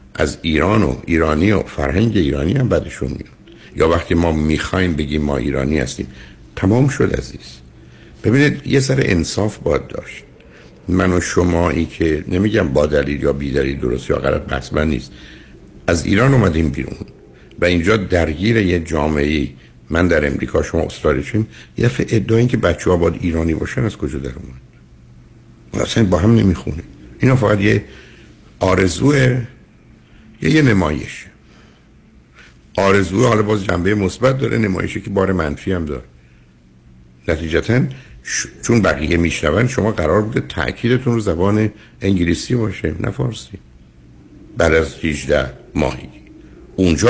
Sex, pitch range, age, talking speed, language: male, 70-110 Hz, 60-79, 140 wpm, Persian